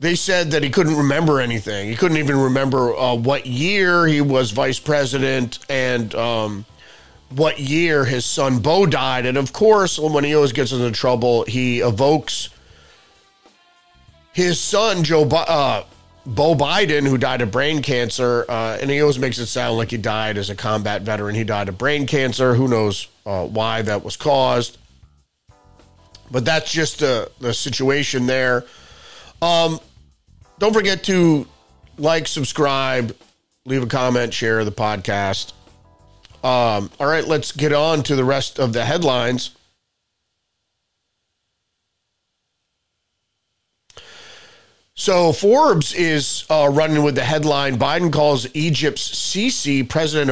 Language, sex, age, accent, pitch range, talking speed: English, male, 40-59, American, 115-155 Hz, 140 wpm